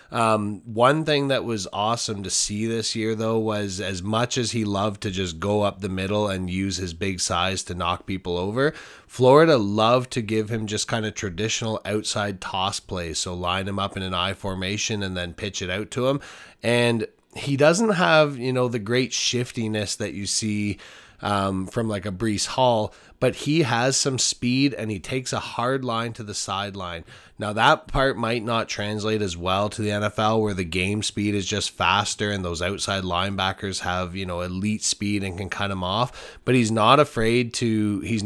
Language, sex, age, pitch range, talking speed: English, male, 20-39, 95-115 Hz, 200 wpm